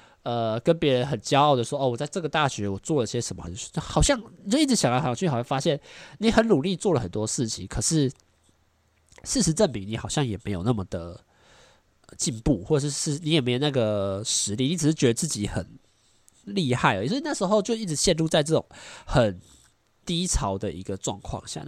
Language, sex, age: Chinese, male, 20-39